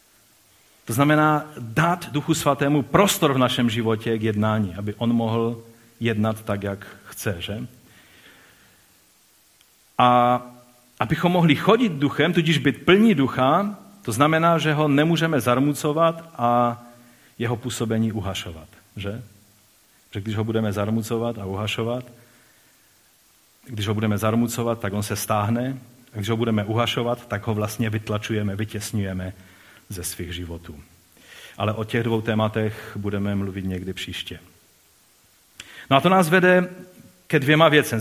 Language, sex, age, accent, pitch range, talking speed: Czech, male, 40-59, native, 105-145 Hz, 135 wpm